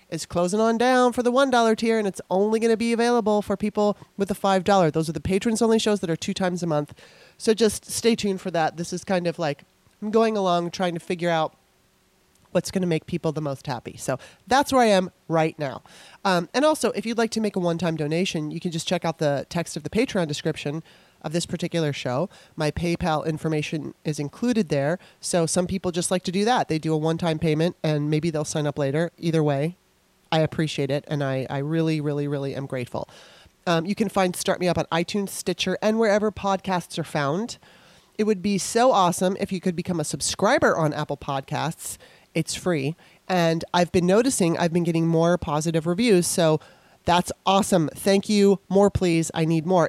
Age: 30-49